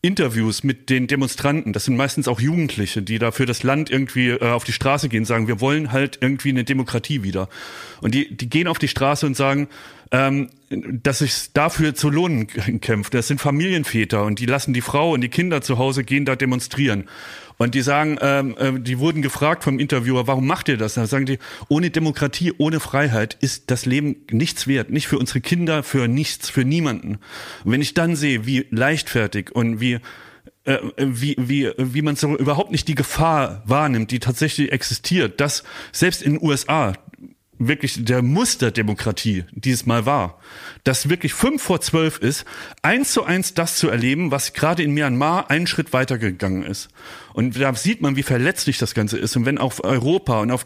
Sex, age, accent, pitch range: male, 30-49, German, 120-150 Hz